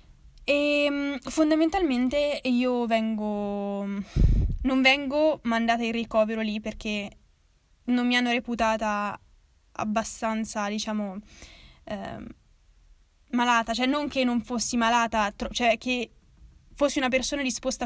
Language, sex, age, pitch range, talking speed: Italian, female, 10-29, 210-250 Hz, 105 wpm